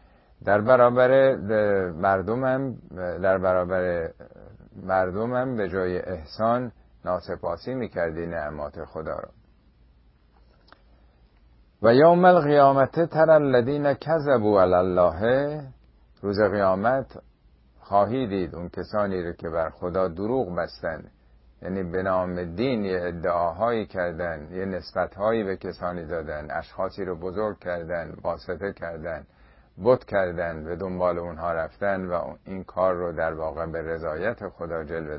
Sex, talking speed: male, 115 wpm